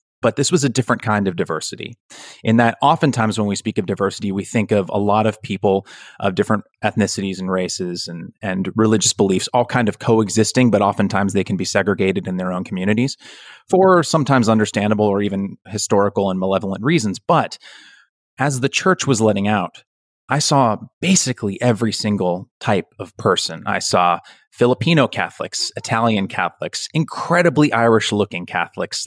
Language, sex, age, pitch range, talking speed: English, male, 30-49, 100-130 Hz, 165 wpm